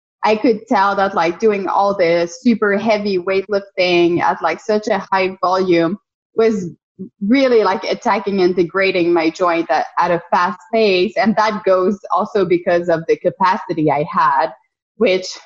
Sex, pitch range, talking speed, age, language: female, 180-225 Hz, 160 wpm, 20-39, English